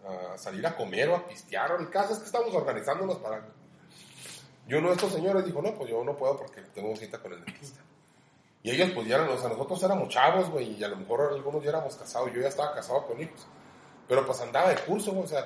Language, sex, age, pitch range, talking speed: Spanish, male, 30-49, 120-185 Hz, 250 wpm